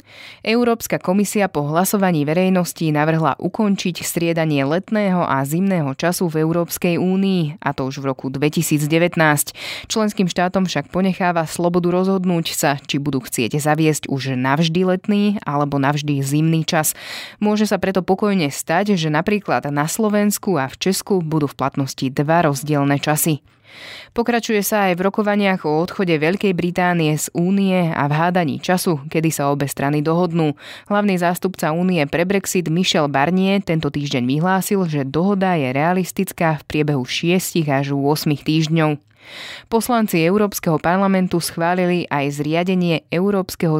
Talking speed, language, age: 140 wpm, Slovak, 20-39